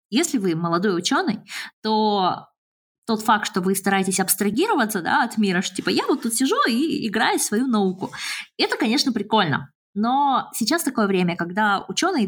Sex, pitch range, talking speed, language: female, 180-255 Hz, 160 wpm, Russian